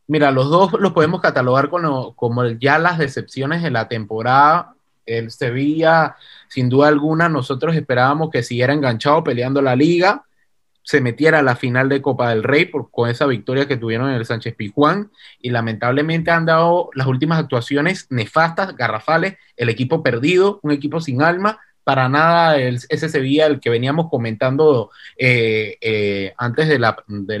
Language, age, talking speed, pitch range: Spanish, 30-49, 170 wpm, 125-160 Hz